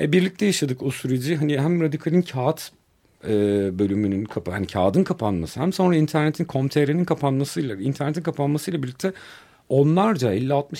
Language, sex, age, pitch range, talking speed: Turkish, male, 50-69, 140-165 Hz, 140 wpm